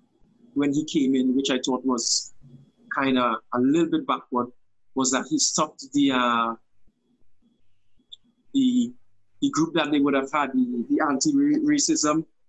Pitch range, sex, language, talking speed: 125-165 Hz, male, English, 150 wpm